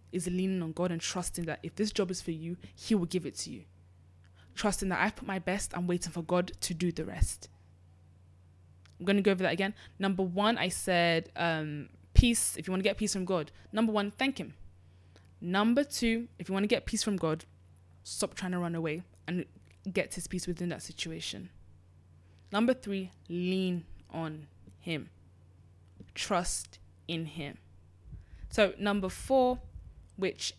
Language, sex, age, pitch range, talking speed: English, female, 20-39, 155-195 Hz, 180 wpm